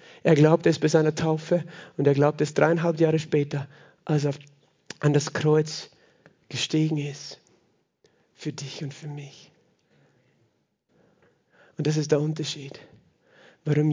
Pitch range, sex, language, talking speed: 145-160 Hz, male, German, 135 wpm